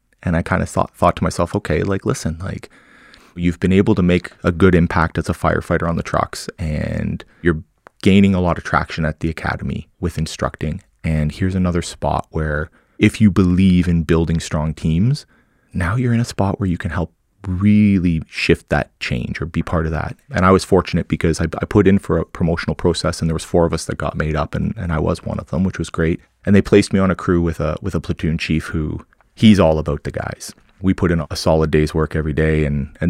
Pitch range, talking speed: 80-100 Hz, 240 wpm